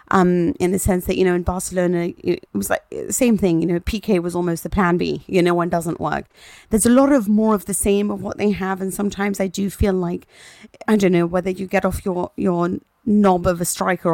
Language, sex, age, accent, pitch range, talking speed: English, female, 30-49, British, 175-200 Hz, 250 wpm